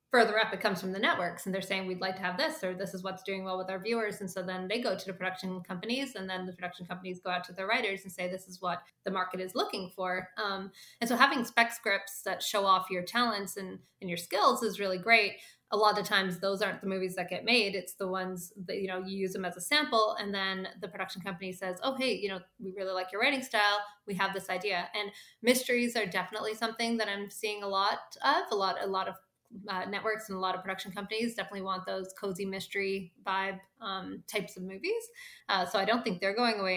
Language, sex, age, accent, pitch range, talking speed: English, female, 20-39, American, 185-215 Hz, 255 wpm